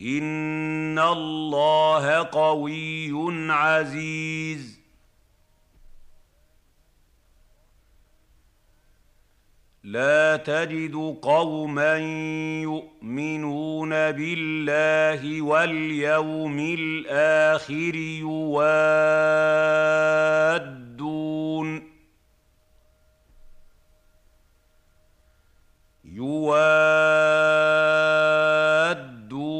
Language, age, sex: Arabic, 50-69, male